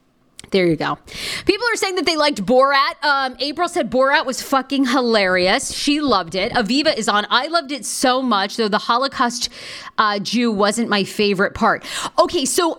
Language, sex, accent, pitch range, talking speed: English, female, American, 190-260 Hz, 185 wpm